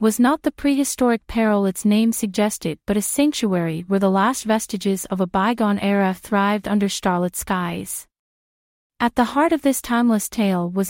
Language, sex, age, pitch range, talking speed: English, female, 30-49, 195-240 Hz, 170 wpm